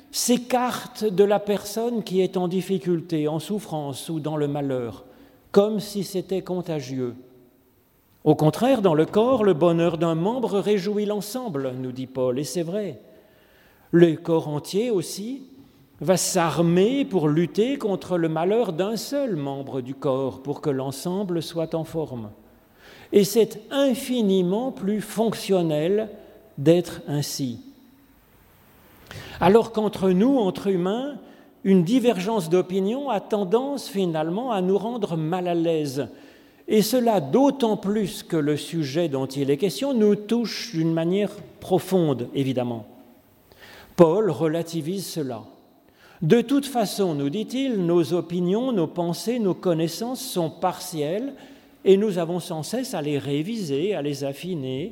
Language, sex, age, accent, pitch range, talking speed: French, male, 40-59, French, 155-215 Hz, 135 wpm